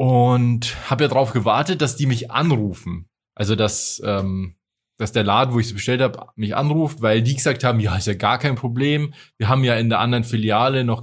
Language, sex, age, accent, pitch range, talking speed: German, male, 20-39, German, 105-125 Hz, 220 wpm